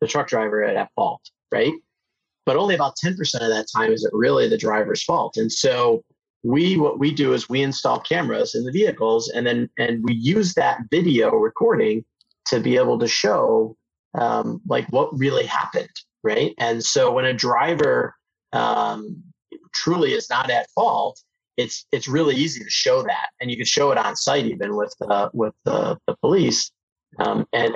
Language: English